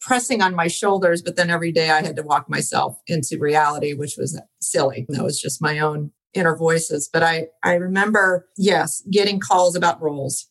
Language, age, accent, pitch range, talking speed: English, 40-59, American, 165-200 Hz, 195 wpm